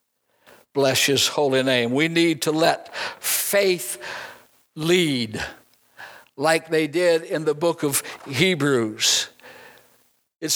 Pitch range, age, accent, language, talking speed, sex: 150-200 Hz, 60-79, American, English, 110 wpm, male